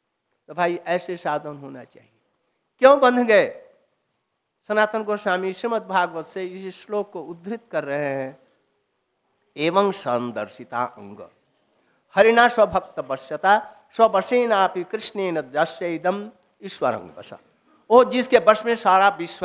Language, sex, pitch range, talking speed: Hindi, male, 170-220 Hz, 115 wpm